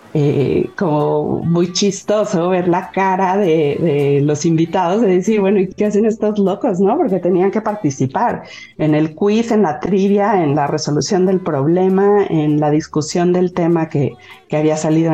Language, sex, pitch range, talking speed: Spanish, female, 155-195 Hz, 175 wpm